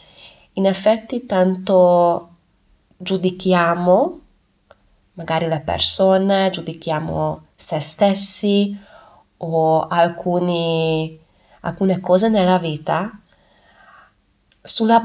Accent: native